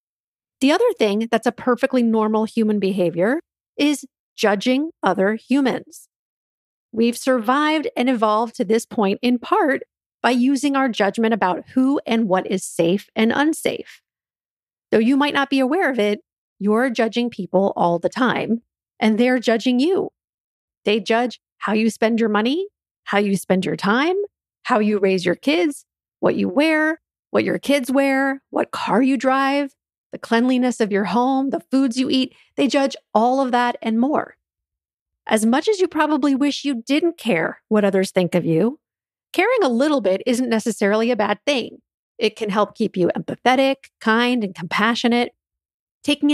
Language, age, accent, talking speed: English, 40-59, American, 165 wpm